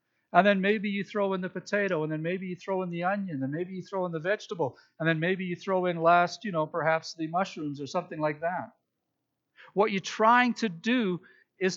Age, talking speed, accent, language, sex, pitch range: 50-69, 230 wpm, American, English, male, 160-215 Hz